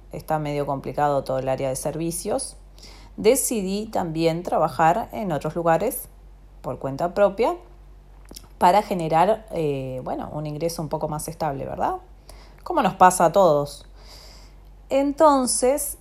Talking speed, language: 125 wpm, Spanish